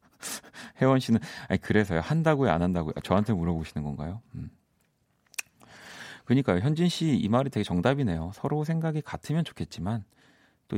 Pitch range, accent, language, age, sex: 90-145 Hz, native, Korean, 40-59, male